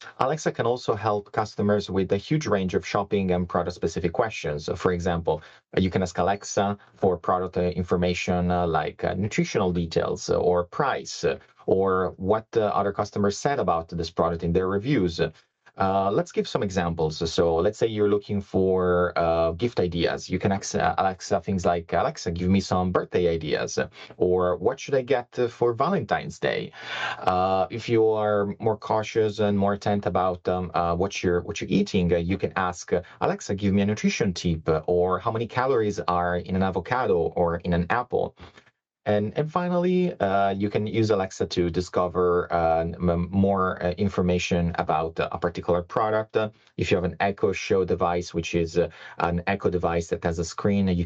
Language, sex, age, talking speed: English, male, 30-49, 180 wpm